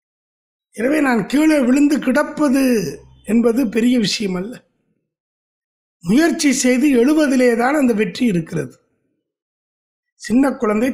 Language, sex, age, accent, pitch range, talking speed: Tamil, male, 50-69, native, 185-265 Hz, 100 wpm